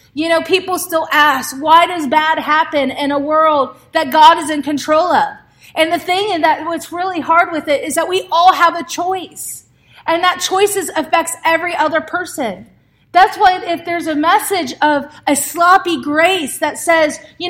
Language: English